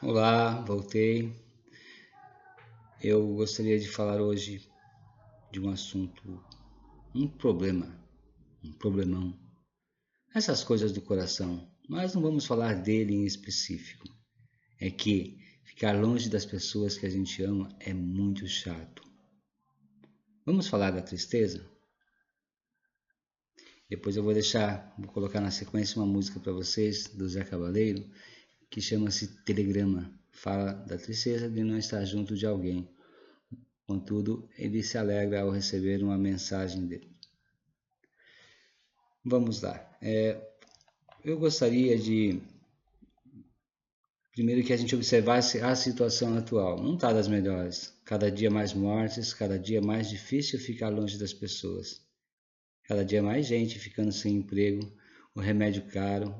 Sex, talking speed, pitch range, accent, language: male, 125 wpm, 100-115 Hz, Brazilian, Portuguese